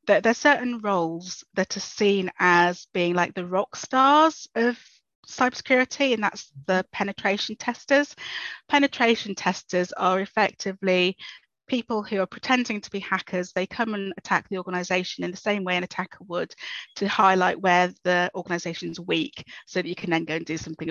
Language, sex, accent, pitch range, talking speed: English, female, British, 185-245 Hz, 170 wpm